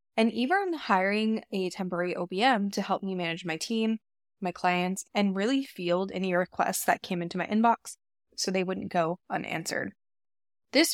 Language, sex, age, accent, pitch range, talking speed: English, female, 10-29, American, 180-230 Hz, 165 wpm